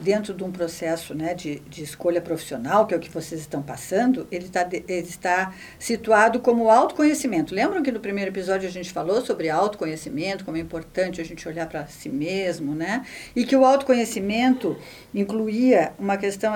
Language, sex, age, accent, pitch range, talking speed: Portuguese, female, 50-69, Brazilian, 170-250 Hz, 185 wpm